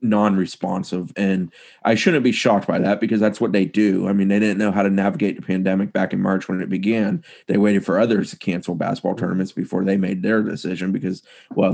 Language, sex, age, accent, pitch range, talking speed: English, male, 30-49, American, 95-115 Hz, 225 wpm